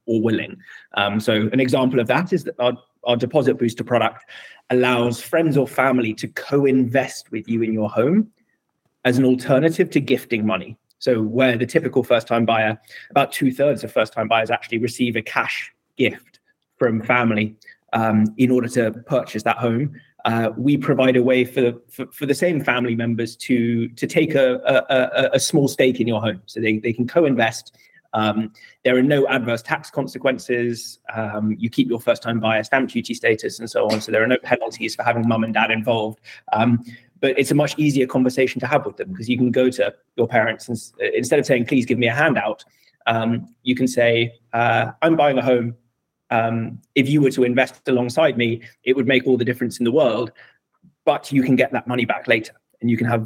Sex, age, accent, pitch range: male, 20-39, British, 115-130 Hz